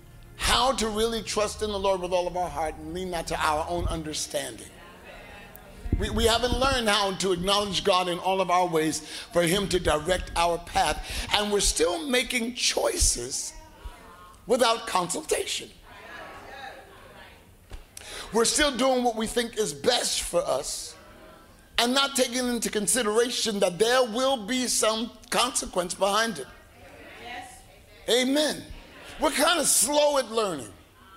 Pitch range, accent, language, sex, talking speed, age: 180-250 Hz, American, English, male, 145 wpm, 50-69